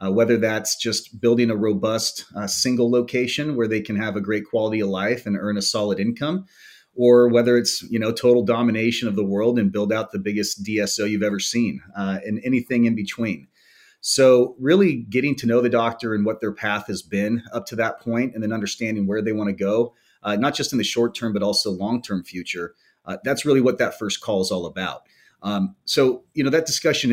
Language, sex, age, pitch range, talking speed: English, male, 30-49, 105-120 Hz, 215 wpm